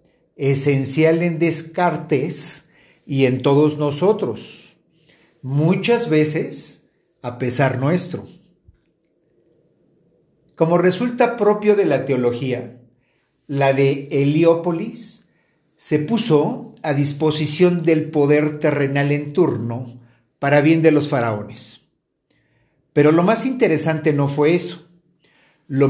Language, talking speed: Spanish, 100 wpm